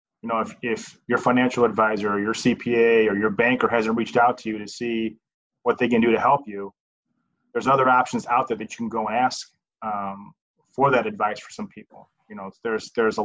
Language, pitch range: English, 110-125 Hz